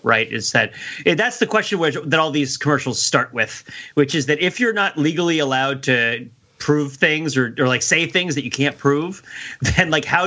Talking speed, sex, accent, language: 205 wpm, male, American, English